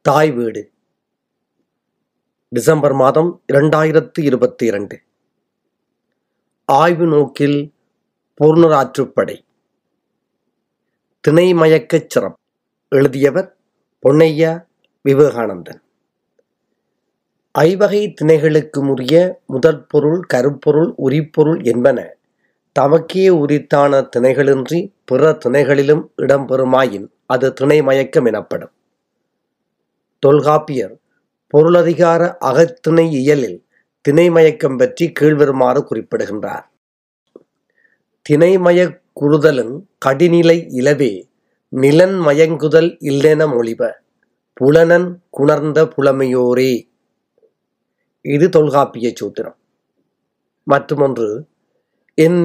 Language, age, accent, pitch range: Tamil, 30-49, native, 140-170 Hz